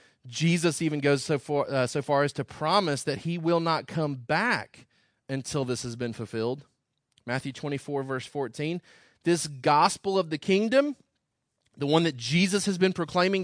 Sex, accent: male, American